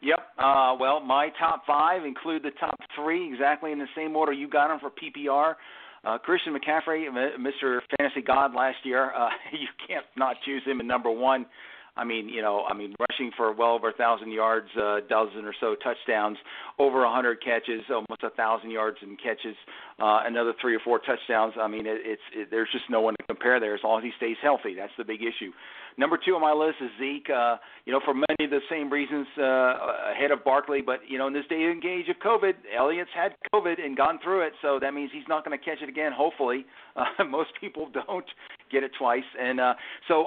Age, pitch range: 50-69, 120-150 Hz